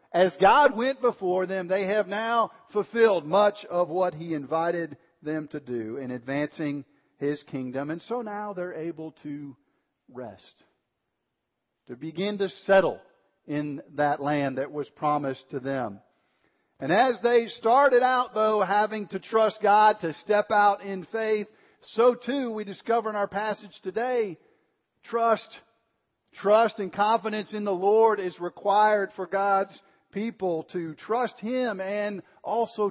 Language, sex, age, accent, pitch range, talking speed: English, male, 50-69, American, 165-210 Hz, 145 wpm